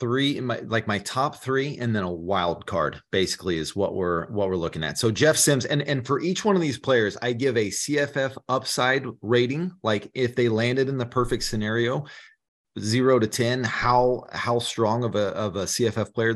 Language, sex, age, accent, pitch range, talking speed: English, male, 30-49, American, 95-125 Hz, 210 wpm